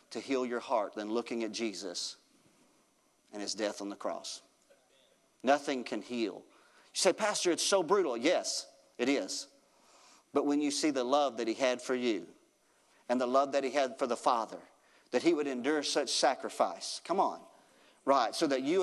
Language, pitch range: English, 130-195 Hz